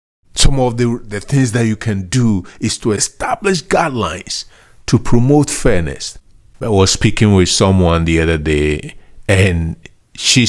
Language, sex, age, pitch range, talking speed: English, male, 50-69, 85-115 Hz, 150 wpm